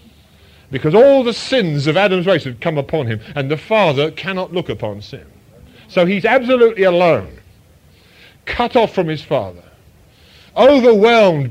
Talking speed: 145 wpm